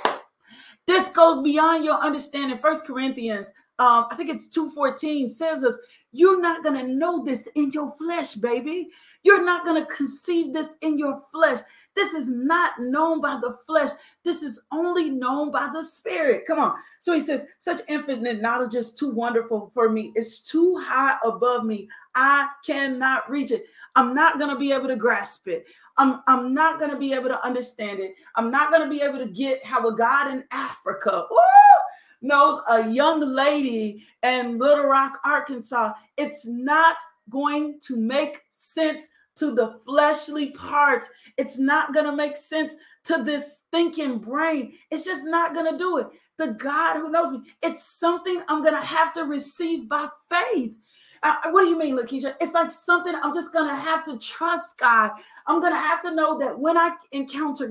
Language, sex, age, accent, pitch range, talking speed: English, female, 40-59, American, 255-325 Hz, 180 wpm